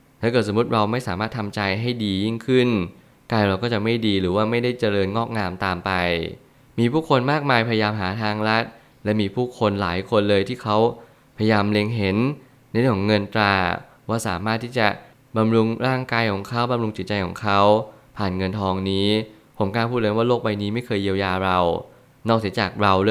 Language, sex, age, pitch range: Thai, male, 20-39, 100-120 Hz